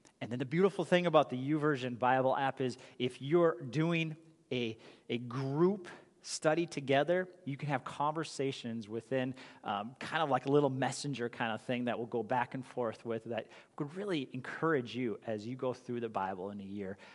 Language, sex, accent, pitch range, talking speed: English, male, American, 110-140 Hz, 190 wpm